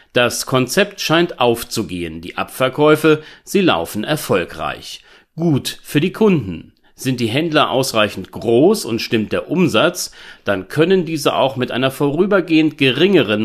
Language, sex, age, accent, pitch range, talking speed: German, male, 40-59, German, 105-160 Hz, 135 wpm